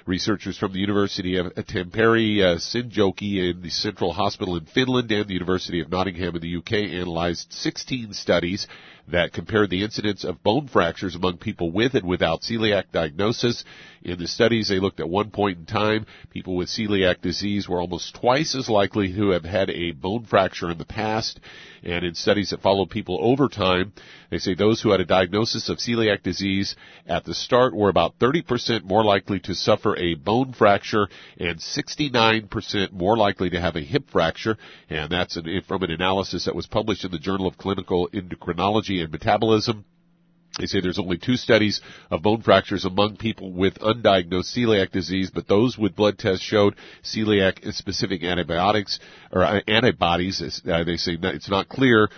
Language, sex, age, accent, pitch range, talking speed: English, male, 50-69, American, 90-110 Hz, 175 wpm